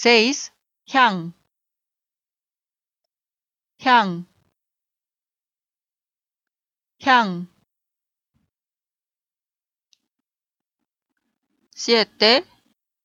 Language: Korean